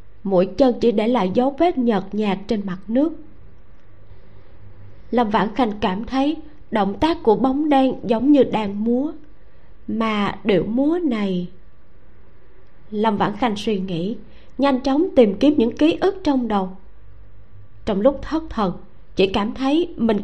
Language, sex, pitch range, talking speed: Vietnamese, female, 185-255 Hz, 155 wpm